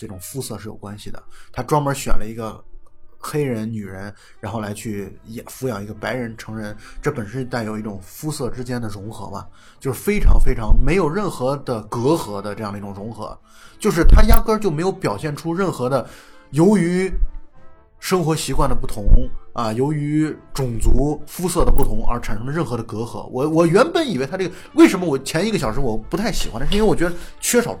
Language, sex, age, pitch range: Chinese, male, 20-39, 110-165 Hz